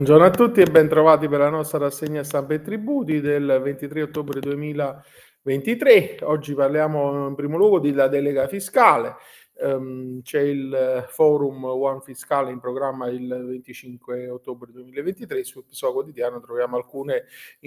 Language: Italian